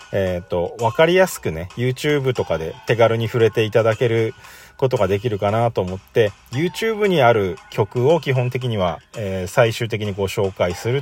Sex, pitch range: male, 95-145 Hz